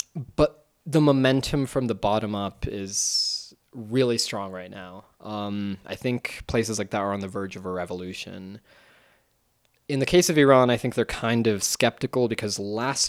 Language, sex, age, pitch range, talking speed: English, male, 20-39, 100-130 Hz, 175 wpm